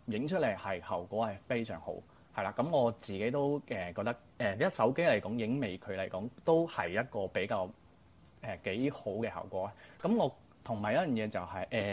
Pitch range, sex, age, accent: 100-140 Hz, male, 30-49, native